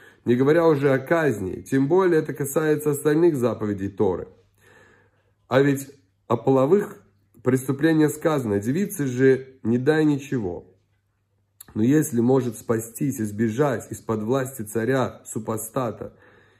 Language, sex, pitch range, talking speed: Russian, male, 110-145 Hz, 115 wpm